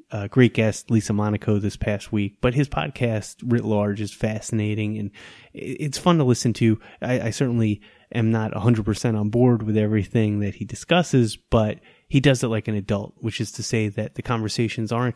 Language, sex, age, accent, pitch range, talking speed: English, male, 20-39, American, 105-115 Hz, 195 wpm